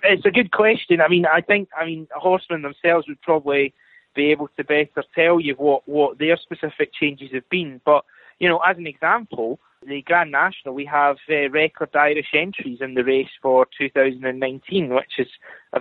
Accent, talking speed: British, 190 wpm